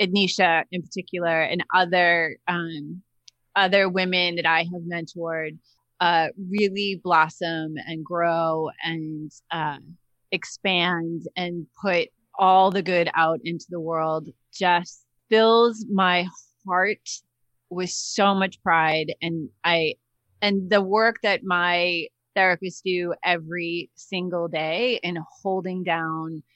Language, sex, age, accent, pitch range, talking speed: English, female, 30-49, American, 165-195 Hz, 115 wpm